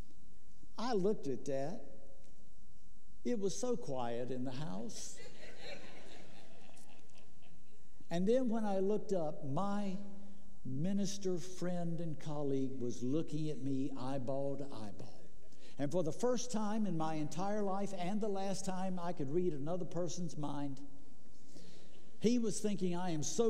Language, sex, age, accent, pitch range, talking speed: English, male, 60-79, American, 140-190 Hz, 140 wpm